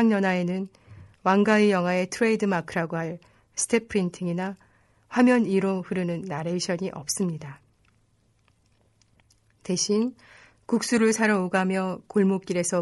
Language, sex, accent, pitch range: Korean, female, native, 165-205 Hz